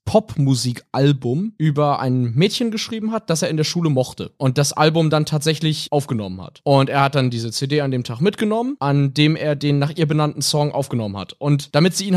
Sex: male